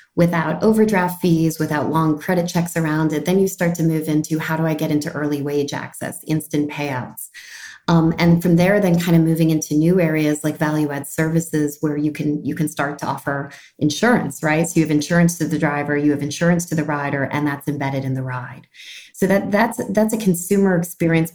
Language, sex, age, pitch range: English, female, 30-49, 145-170 Hz